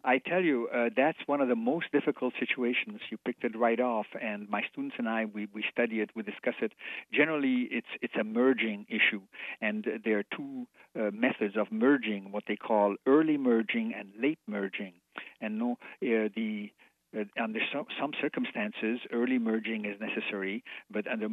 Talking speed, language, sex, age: 180 wpm, English, male, 60-79